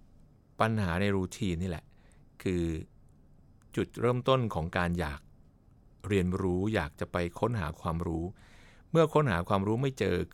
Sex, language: male, Thai